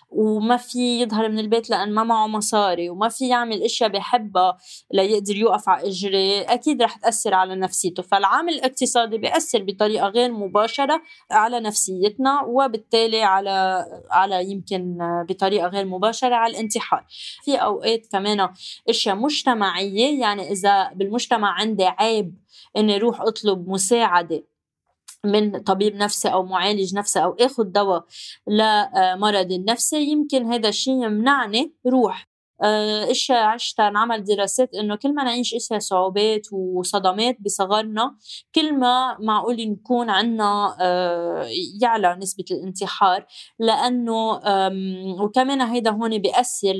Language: Arabic